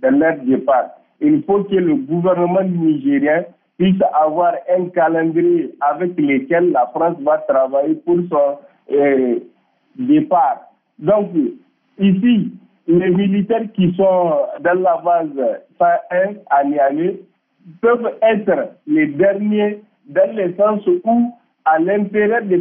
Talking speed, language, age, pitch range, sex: 125 wpm, French, 50-69, 170-225 Hz, male